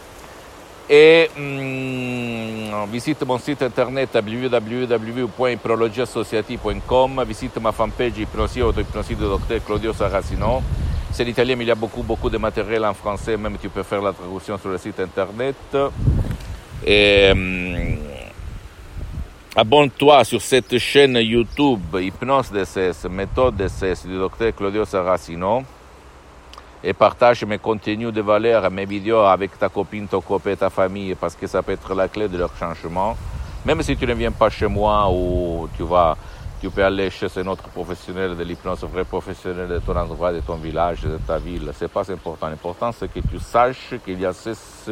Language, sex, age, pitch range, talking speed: Italian, male, 60-79, 90-115 Hz, 165 wpm